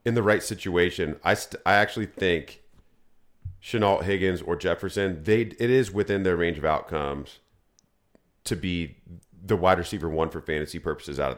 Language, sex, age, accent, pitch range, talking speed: English, male, 40-59, American, 85-105 Hz, 165 wpm